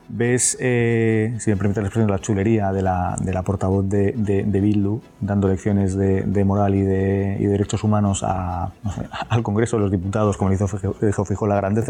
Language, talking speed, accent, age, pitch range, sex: Spanish, 230 wpm, Spanish, 30-49, 100-115 Hz, male